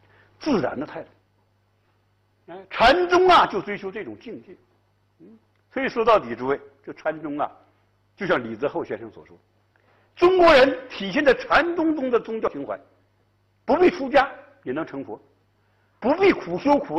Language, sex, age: Chinese, male, 60-79